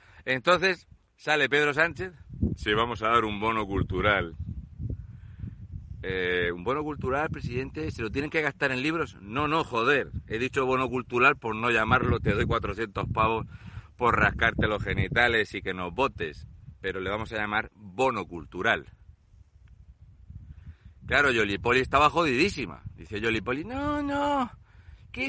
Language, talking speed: Spanish, 145 wpm